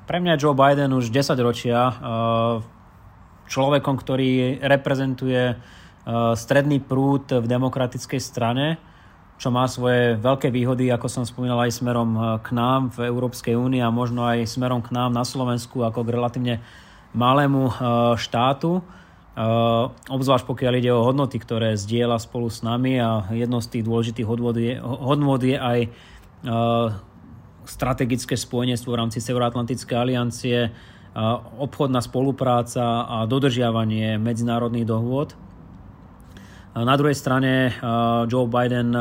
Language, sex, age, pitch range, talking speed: Slovak, male, 20-39, 115-130 Hz, 120 wpm